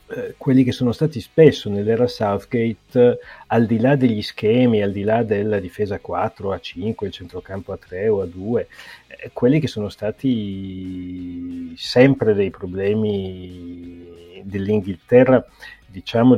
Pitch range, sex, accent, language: 95-125 Hz, male, native, Italian